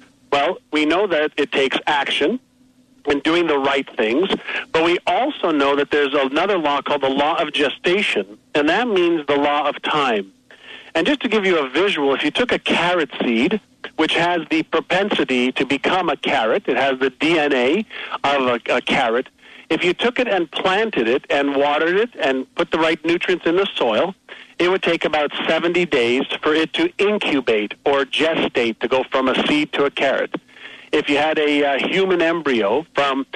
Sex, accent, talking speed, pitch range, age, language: male, American, 190 wpm, 140-185 Hz, 50-69, English